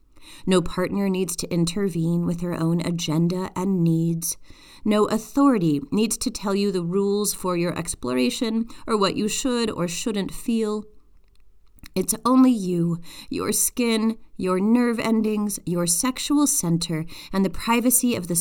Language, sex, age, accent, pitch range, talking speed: English, female, 30-49, American, 170-220 Hz, 145 wpm